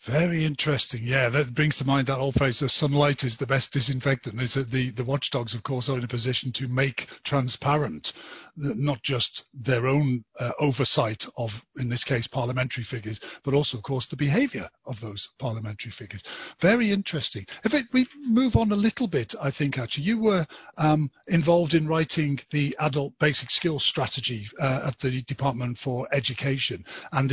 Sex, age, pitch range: male, 50-69, 125-155 Hz